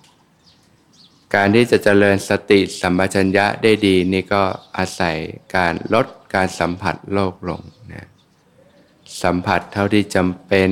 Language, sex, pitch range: Thai, male, 90-105 Hz